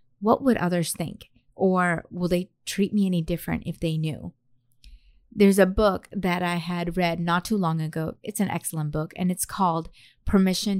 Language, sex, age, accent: English, female, 30-49, American